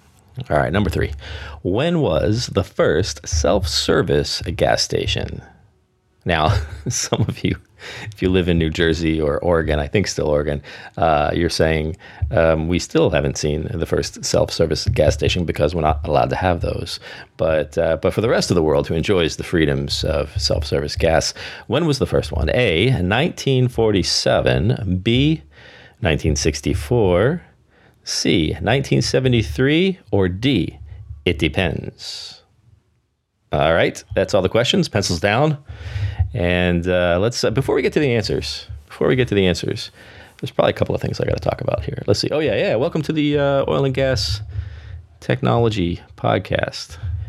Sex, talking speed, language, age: male, 160 wpm, English, 40-59